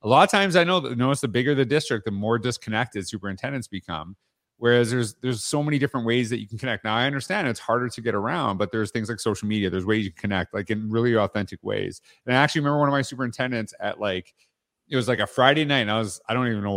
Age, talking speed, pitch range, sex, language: 30-49, 270 wpm, 105-130 Hz, male, English